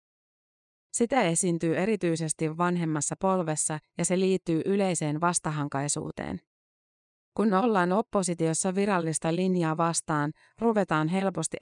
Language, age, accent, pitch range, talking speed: Finnish, 30-49, native, 155-185 Hz, 95 wpm